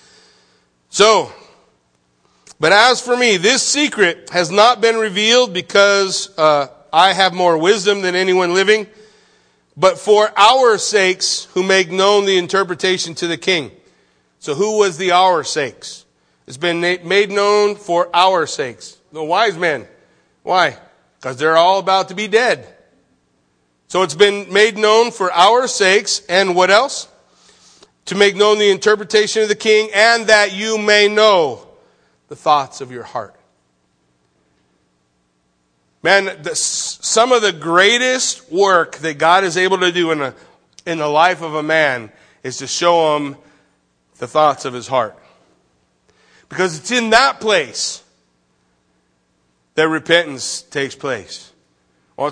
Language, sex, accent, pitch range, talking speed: English, male, American, 130-205 Hz, 140 wpm